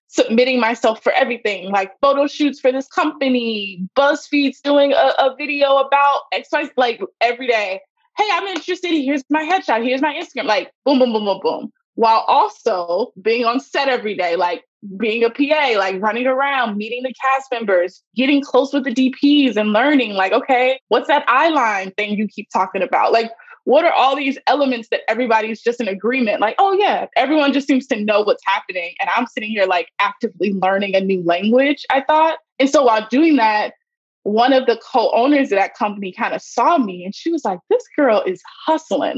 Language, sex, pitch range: English, female, 225-300 Hz